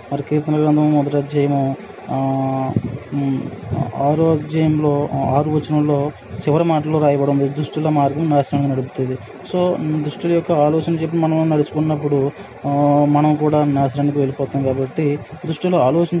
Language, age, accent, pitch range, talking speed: Telugu, 20-39, native, 140-155 Hz, 105 wpm